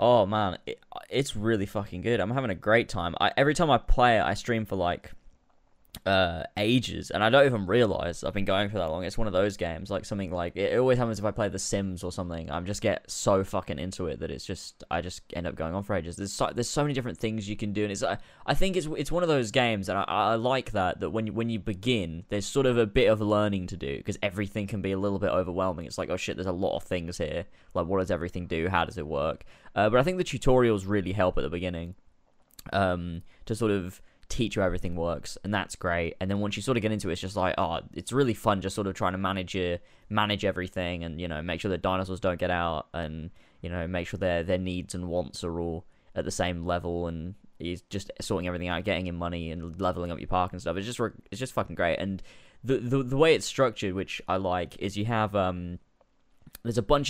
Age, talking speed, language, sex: 10-29, 260 wpm, English, male